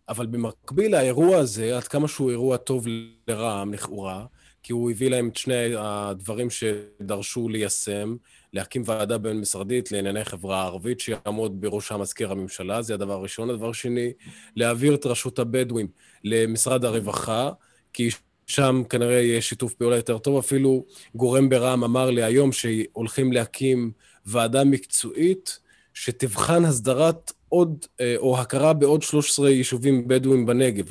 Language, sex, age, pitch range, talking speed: Hebrew, male, 20-39, 115-140 Hz, 135 wpm